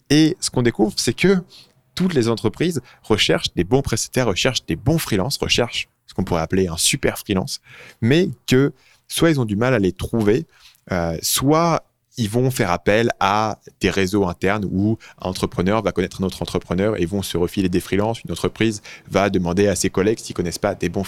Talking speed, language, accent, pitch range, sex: 210 wpm, French, French, 90-115 Hz, male